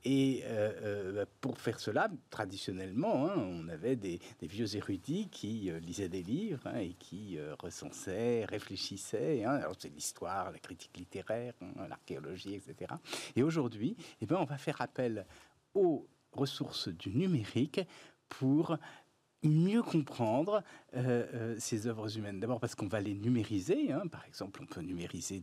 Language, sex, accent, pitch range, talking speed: French, male, French, 95-140 Hz, 160 wpm